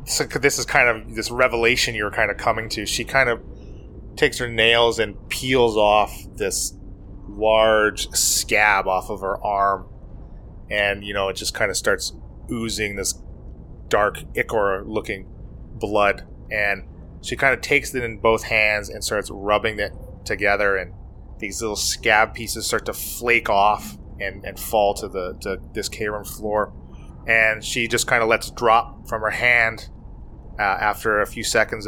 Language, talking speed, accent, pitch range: English, 170 wpm, American, 100-115 Hz